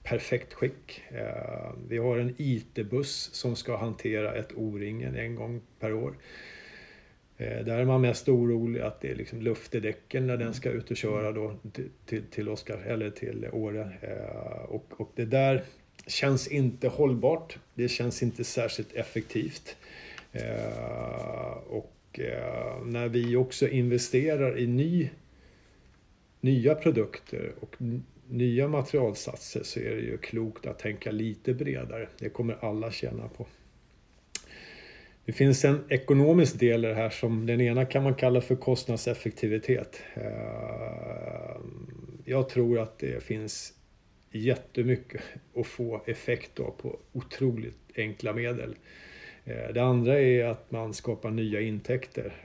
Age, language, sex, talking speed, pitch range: 50-69, Swedish, male, 130 wpm, 110-130 Hz